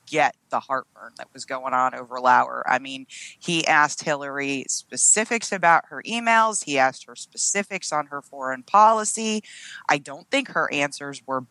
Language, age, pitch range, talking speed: English, 30-49, 140-190 Hz, 165 wpm